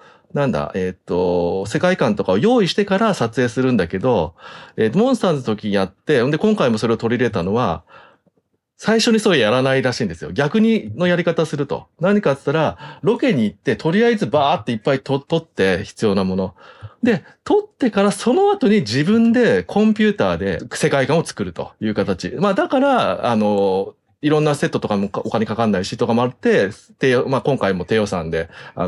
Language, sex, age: Japanese, male, 30-49